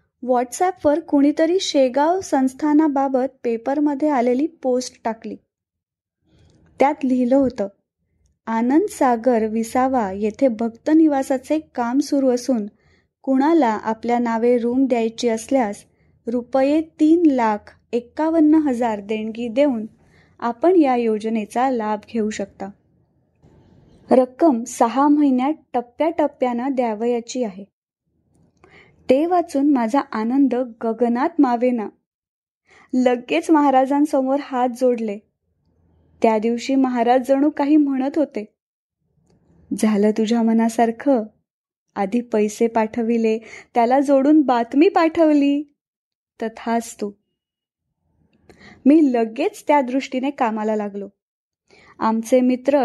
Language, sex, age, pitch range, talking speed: Marathi, female, 20-39, 230-285 Hz, 85 wpm